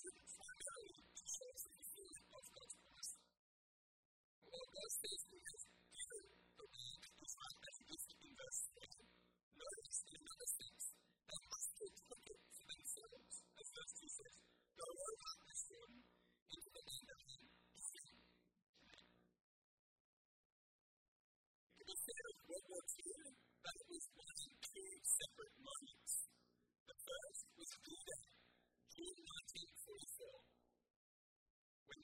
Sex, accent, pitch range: female, American, 275-450 Hz